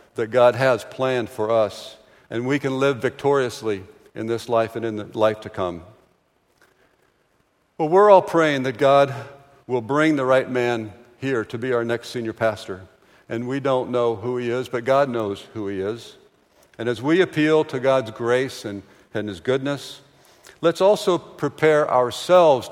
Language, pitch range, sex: English, 115-155 Hz, male